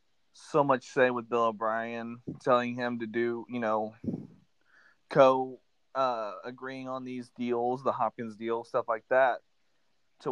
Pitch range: 120-145 Hz